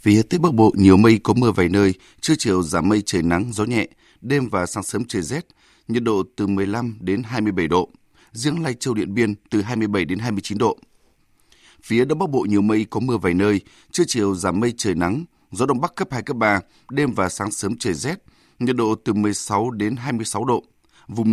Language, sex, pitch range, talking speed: Vietnamese, male, 100-125 Hz, 220 wpm